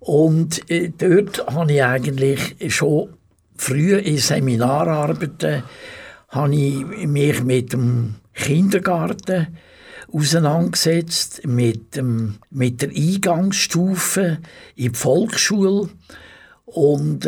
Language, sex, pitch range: German, male, 125-165 Hz